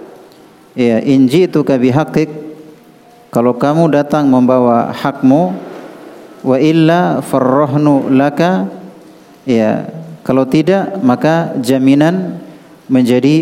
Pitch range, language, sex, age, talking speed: 130-155 Hz, Indonesian, male, 50-69, 80 wpm